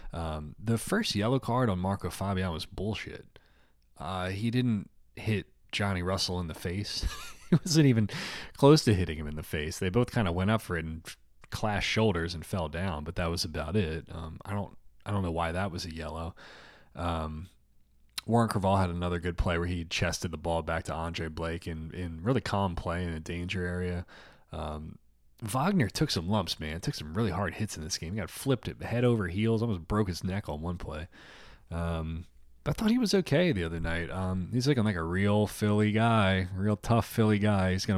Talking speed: 210 wpm